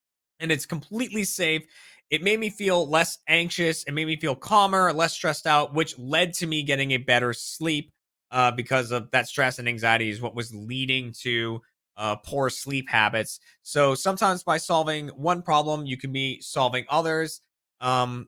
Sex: male